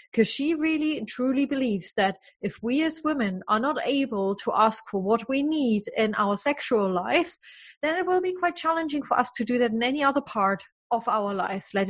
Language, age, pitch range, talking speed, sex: English, 30-49, 210-280 Hz, 215 wpm, female